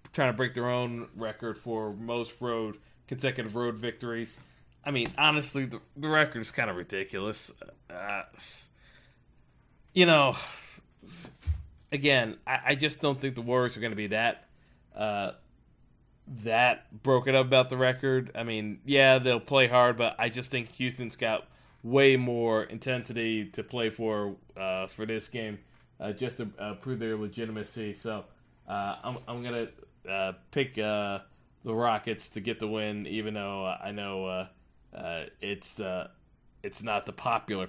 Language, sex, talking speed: English, male, 160 wpm